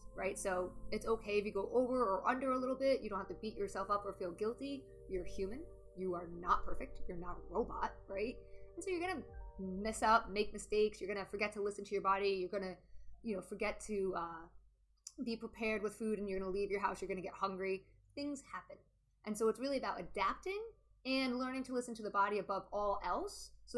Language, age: English, 20-39